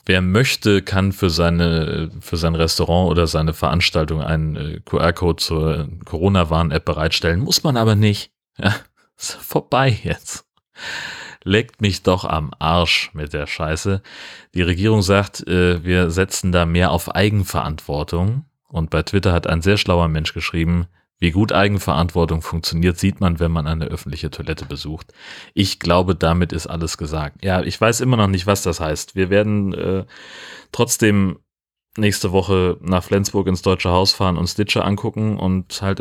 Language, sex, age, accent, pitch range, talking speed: German, male, 30-49, German, 85-100 Hz, 155 wpm